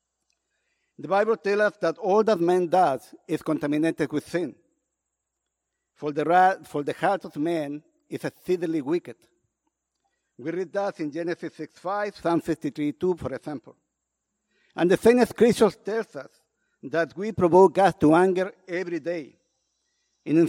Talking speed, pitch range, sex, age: 145 wpm, 155-190 Hz, male, 50-69